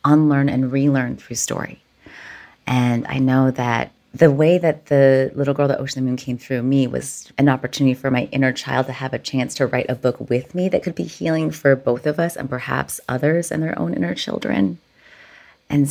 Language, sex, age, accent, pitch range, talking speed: English, female, 30-49, American, 130-155 Hz, 210 wpm